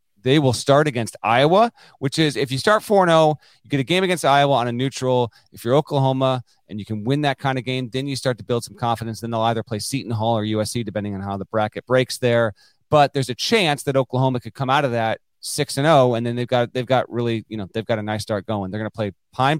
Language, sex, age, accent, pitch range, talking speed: English, male, 30-49, American, 110-135 Hz, 260 wpm